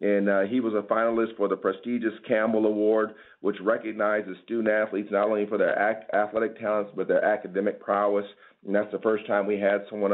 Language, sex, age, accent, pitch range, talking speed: English, male, 40-59, American, 100-115 Hz, 190 wpm